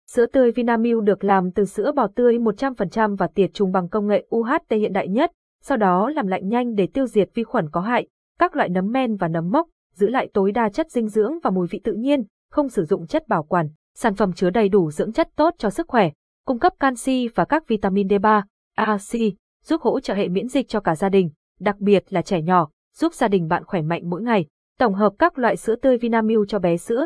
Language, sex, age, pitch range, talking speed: Vietnamese, female, 20-39, 190-245 Hz, 245 wpm